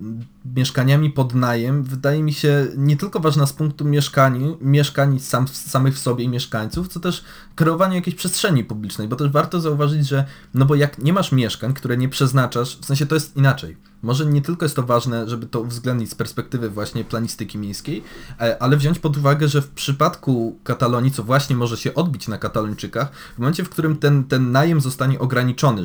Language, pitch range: Polish, 120-150 Hz